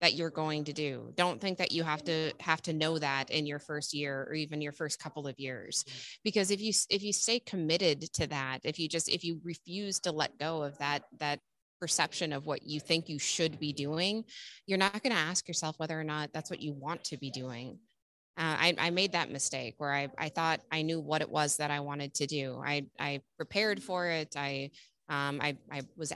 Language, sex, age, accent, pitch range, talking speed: English, female, 20-39, American, 145-165 Hz, 235 wpm